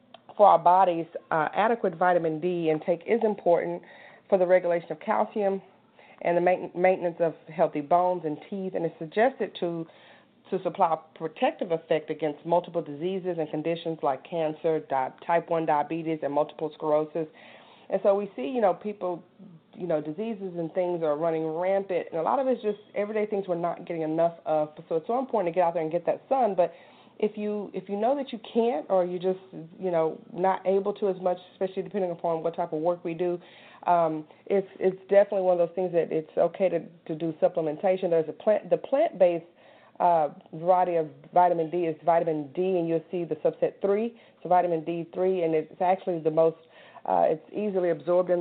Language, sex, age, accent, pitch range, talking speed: English, female, 40-59, American, 165-195 Hz, 200 wpm